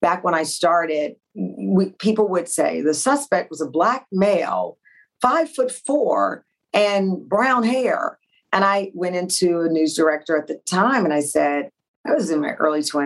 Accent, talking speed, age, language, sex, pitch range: American, 175 wpm, 40-59, English, female, 170-235 Hz